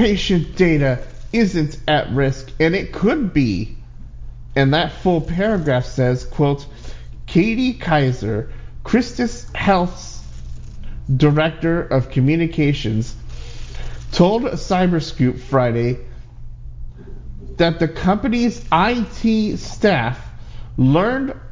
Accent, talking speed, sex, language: American, 85 wpm, male, English